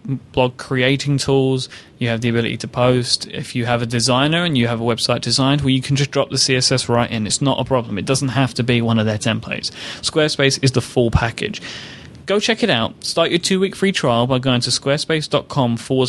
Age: 20-39